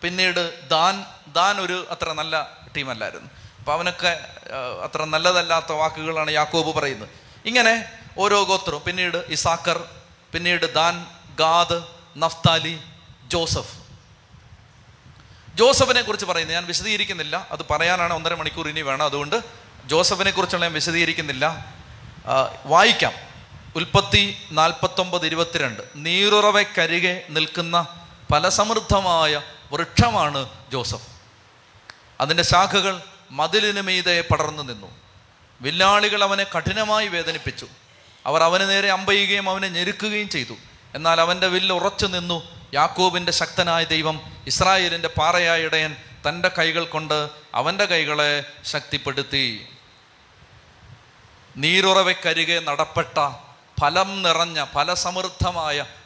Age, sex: 30-49, male